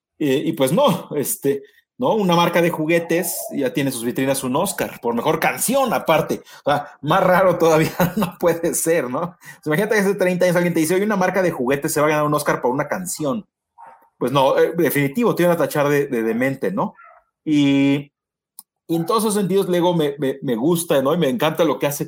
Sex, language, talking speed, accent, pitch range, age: male, Spanish, 215 wpm, Mexican, 140-190 Hz, 40-59